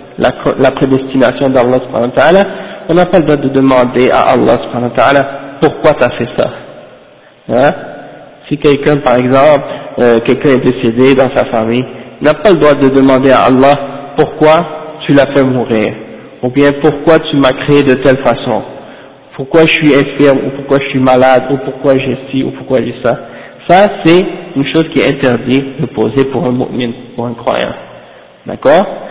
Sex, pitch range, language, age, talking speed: male, 135-160 Hz, French, 50-69, 175 wpm